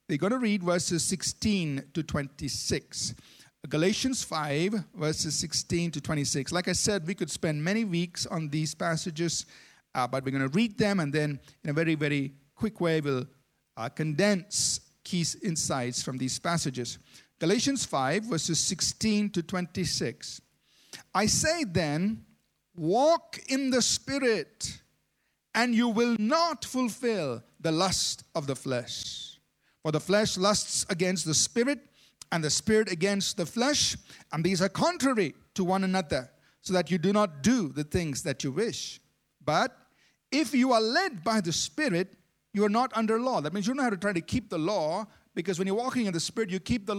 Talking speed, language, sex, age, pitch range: 175 wpm, English, male, 50-69, 155-215 Hz